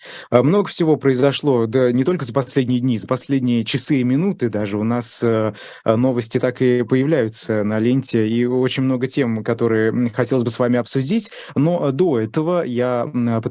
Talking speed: 175 wpm